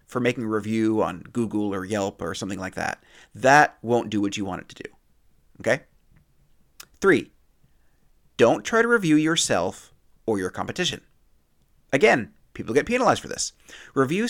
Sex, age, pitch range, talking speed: male, 30-49, 95-150 Hz, 160 wpm